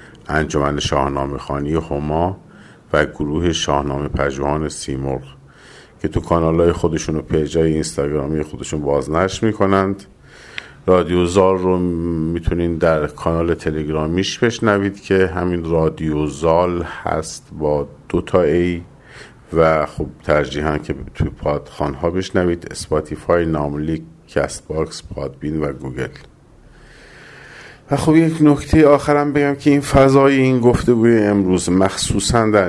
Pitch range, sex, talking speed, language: 75-90 Hz, male, 110 wpm, Persian